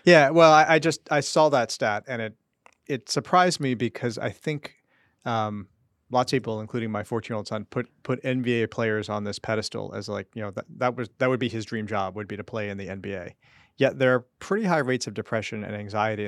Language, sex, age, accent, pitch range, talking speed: English, male, 30-49, American, 105-125 Hz, 235 wpm